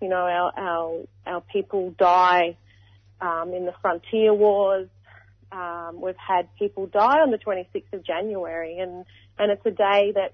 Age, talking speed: 30-49, 165 wpm